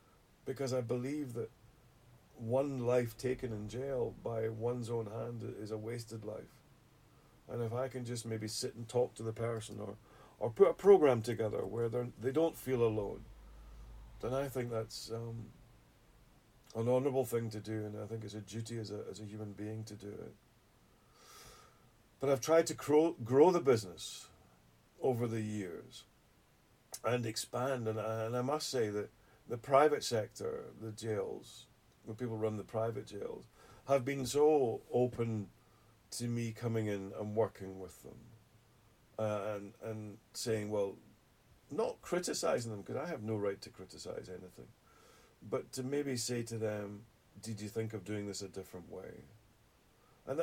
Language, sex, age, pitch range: English, male, 50-69, 105-125 Hz